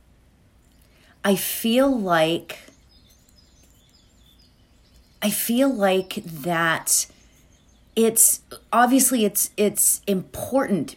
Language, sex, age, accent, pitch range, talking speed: English, female, 40-59, American, 175-250 Hz, 65 wpm